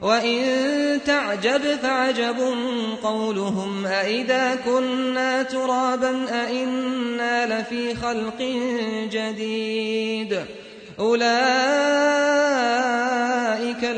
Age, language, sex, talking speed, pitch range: 30-49, Arabic, male, 50 wpm, 220-255 Hz